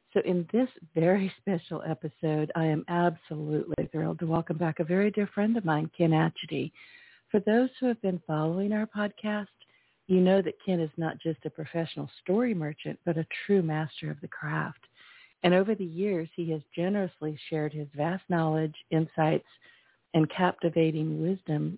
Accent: American